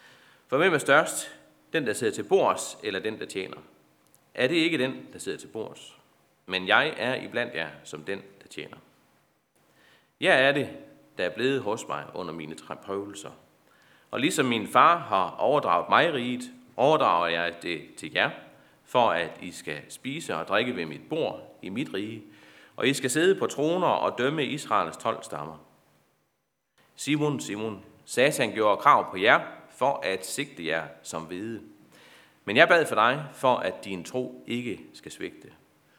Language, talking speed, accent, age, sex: Danish, 175 wpm, native, 30-49, male